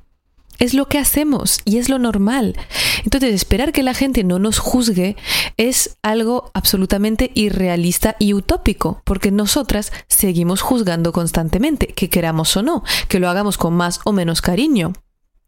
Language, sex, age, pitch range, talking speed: Spanish, female, 30-49, 175-225 Hz, 150 wpm